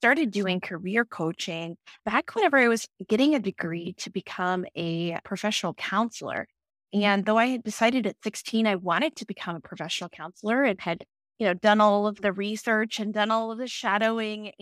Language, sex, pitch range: English, female, 185-230 Hz